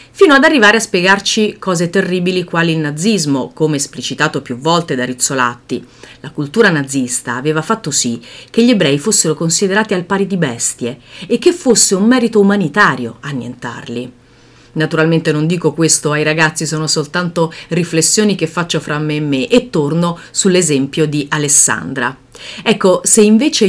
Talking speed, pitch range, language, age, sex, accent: 155 wpm, 135-190 Hz, Italian, 40-59, female, native